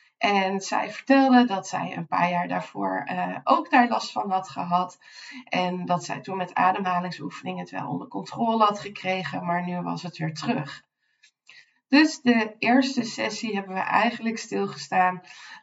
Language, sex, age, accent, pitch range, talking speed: Dutch, female, 20-39, Dutch, 175-230 Hz, 160 wpm